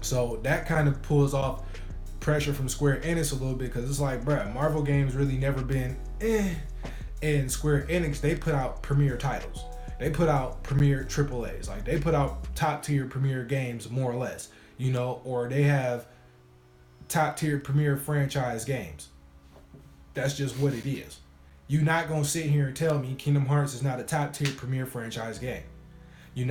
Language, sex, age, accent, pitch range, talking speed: English, male, 20-39, American, 115-145 Hz, 180 wpm